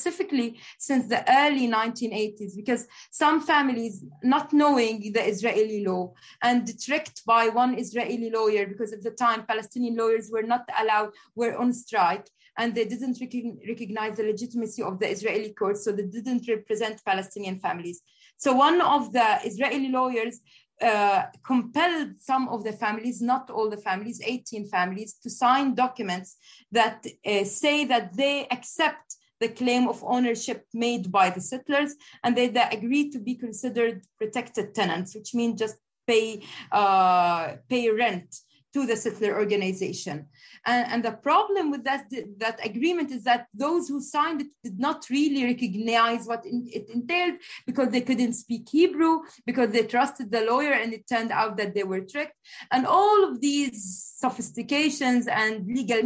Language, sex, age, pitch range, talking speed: English, female, 20-39, 220-260 Hz, 160 wpm